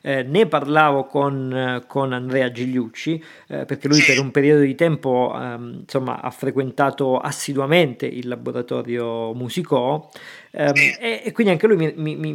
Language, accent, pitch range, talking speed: Italian, native, 130-160 Hz, 150 wpm